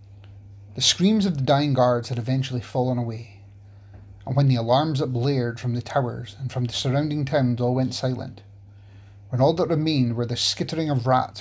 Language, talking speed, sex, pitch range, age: English, 190 wpm, male, 100-130 Hz, 30-49